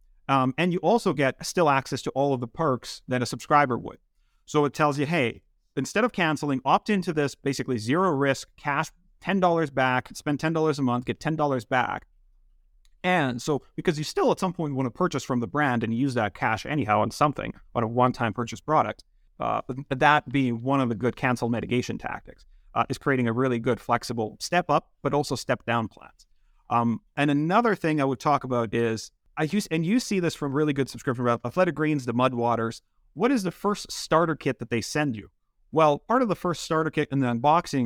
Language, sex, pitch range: English, male, 125-160 Hz